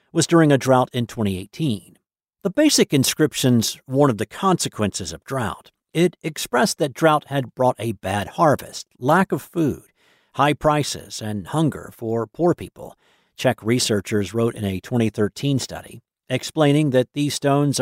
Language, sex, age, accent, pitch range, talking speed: English, male, 50-69, American, 110-145 Hz, 150 wpm